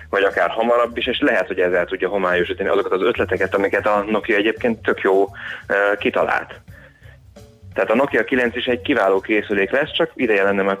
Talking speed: 185 wpm